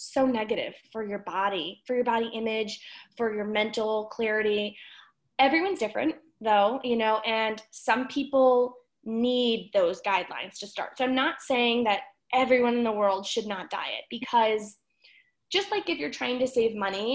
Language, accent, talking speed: English, American, 165 wpm